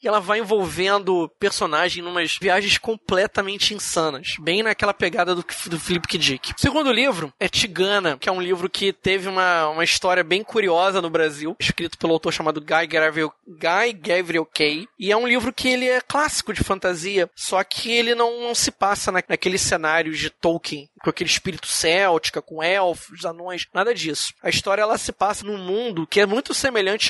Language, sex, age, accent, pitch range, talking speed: Portuguese, male, 20-39, Brazilian, 175-210 Hz, 185 wpm